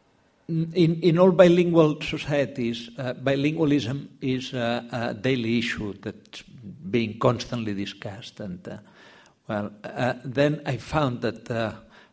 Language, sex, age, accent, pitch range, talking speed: English, male, 60-79, Spanish, 120-145 Hz, 125 wpm